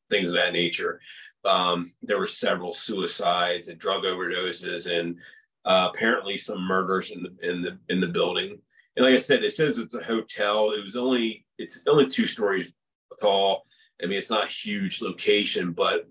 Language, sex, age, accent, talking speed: English, male, 30-49, American, 185 wpm